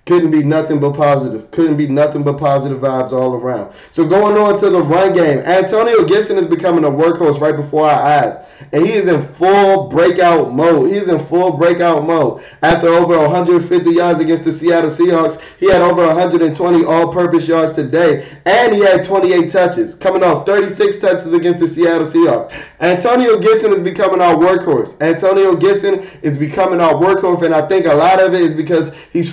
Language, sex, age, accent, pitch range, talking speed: English, male, 20-39, American, 160-195 Hz, 190 wpm